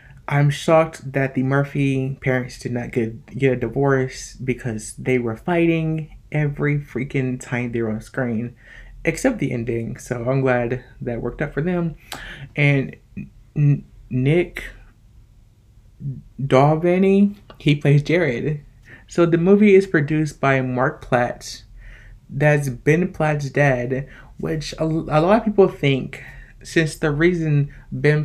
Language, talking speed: English, 135 wpm